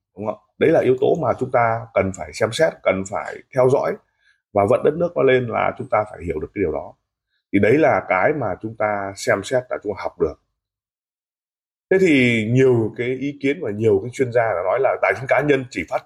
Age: 20-39